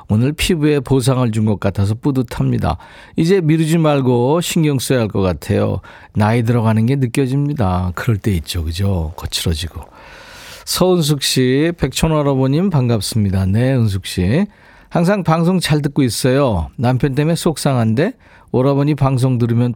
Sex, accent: male, native